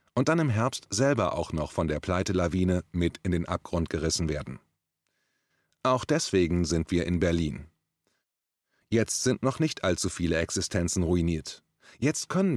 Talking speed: 155 wpm